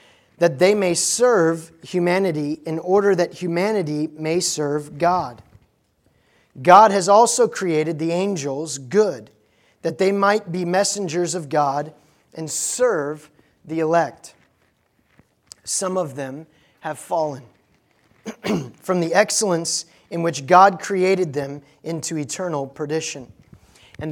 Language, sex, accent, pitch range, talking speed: English, male, American, 150-185 Hz, 115 wpm